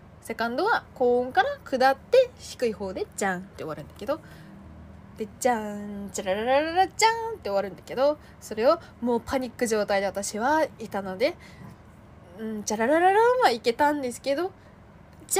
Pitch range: 200-280 Hz